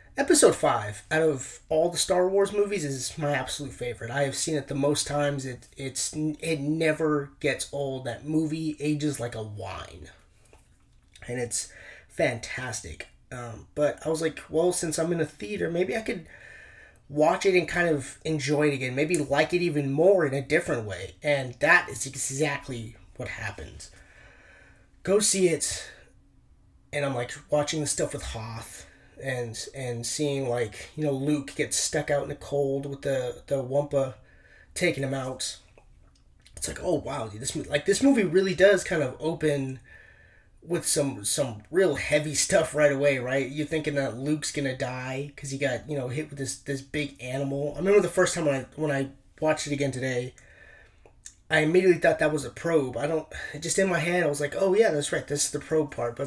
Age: 30-49